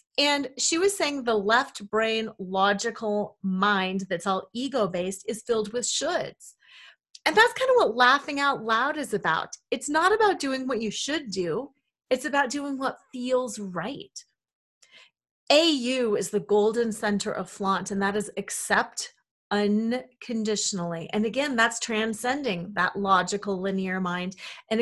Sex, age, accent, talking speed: female, 30-49, American, 145 wpm